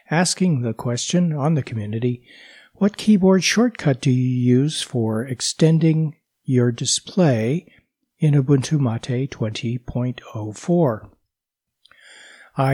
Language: English